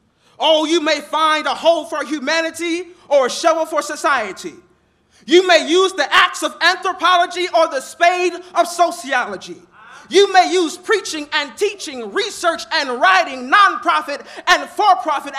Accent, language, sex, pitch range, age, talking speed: American, English, male, 310-390 Hz, 20-39, 145 wpm